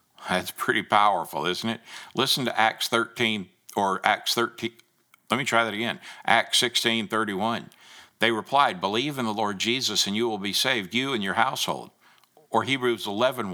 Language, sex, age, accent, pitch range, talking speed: English, male, 60-79, American, 100-115 Hz, 175 wpm